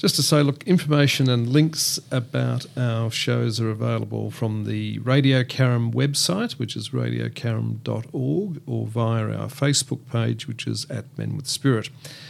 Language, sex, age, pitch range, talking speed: English, male, 50-69, 115-145 Hz, 150 wpm